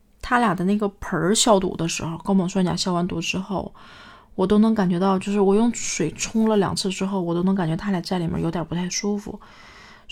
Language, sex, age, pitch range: Chinese, female, 20-39, 180-205 Hz